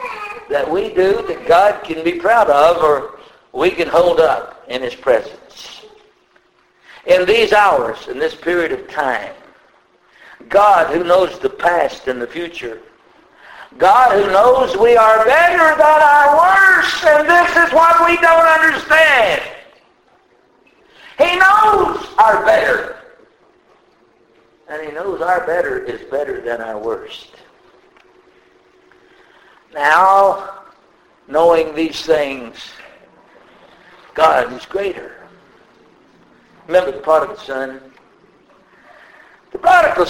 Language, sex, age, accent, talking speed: English, male, 60-79, American, 115 wpm